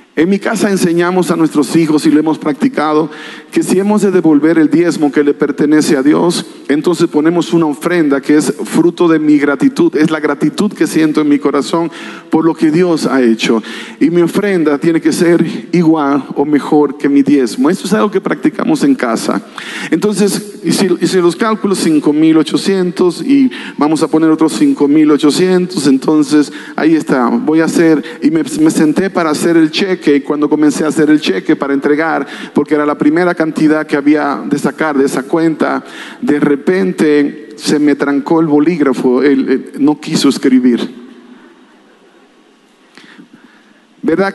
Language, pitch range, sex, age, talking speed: Spanish, 150-180 Hz, male, 40-59, 175 wpm